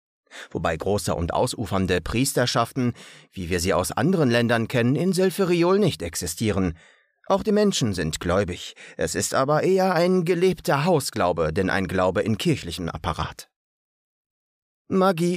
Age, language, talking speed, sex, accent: 30-49, German, 135 wpm, male, German